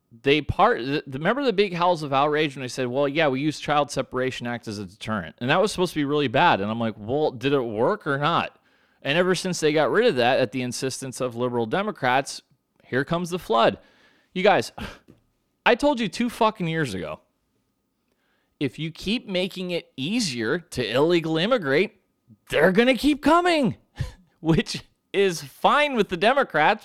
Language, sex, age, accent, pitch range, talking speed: English, male, 30-49, American, 140-210 Hz, 190 wpm